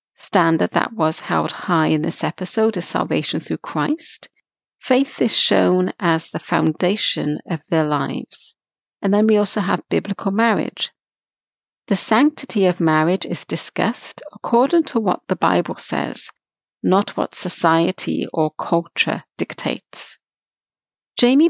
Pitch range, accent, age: 165-215 Hz, British, 60-79